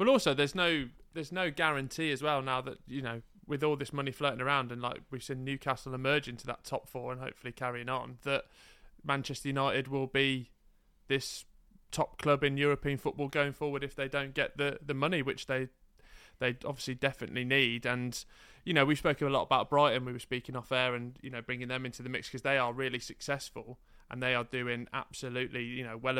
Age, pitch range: 20-39, 125-140 Hz